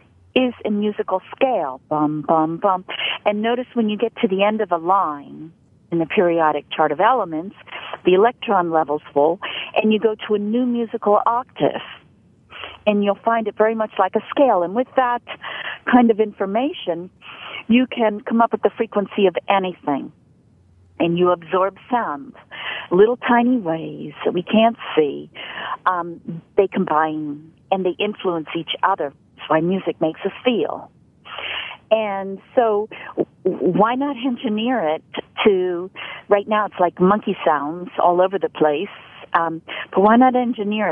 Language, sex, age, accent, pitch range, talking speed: English, female, 50-69, American, 170-235 Hz, 155 wpm